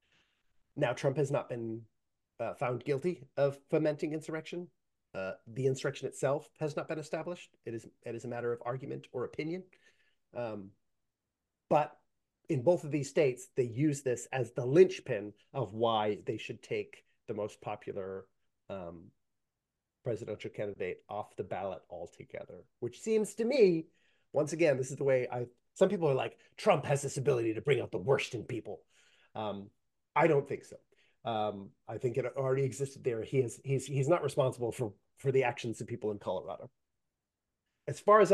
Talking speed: 175 wpm